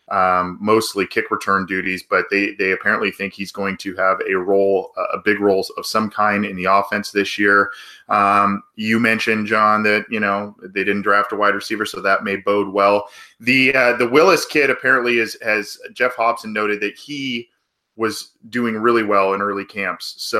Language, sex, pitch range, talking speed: English, male, 100-125 Hz, 195 wpm